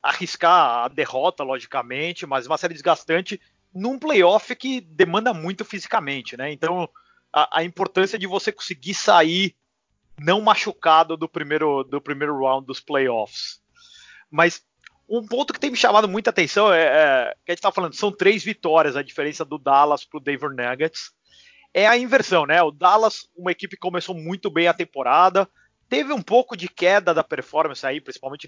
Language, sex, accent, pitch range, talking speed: Portuguese, male, Brazilian, 150-215 Hz, 170 wpm